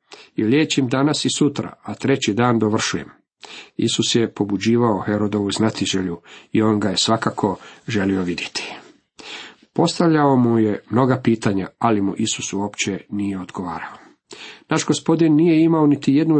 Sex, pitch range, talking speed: male, 110-135 Hz, 140 wpm